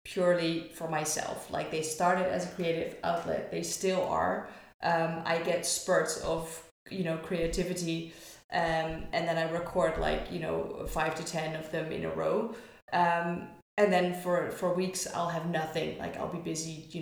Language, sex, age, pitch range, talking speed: English, female, 20-39, 160-185 Hz, 180 wpm